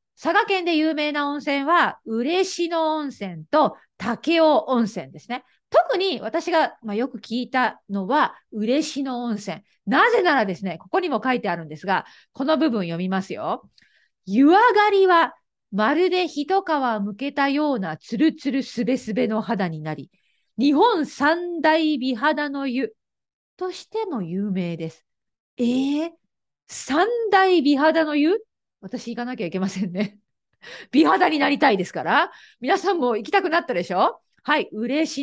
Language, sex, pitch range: Japanese, female, 225-330 Hz